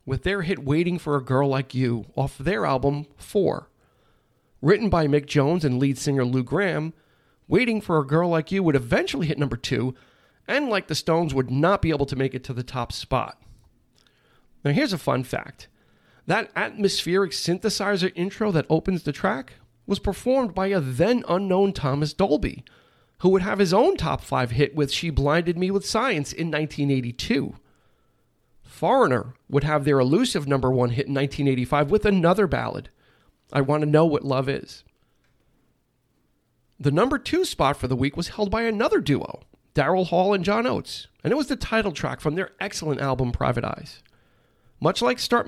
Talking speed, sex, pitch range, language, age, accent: 180 wpm, male, 135-190 Hz, English, 40-59, American